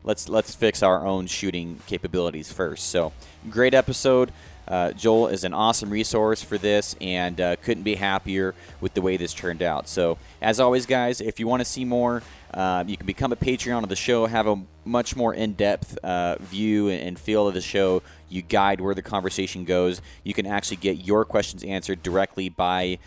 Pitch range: 90-110 Hz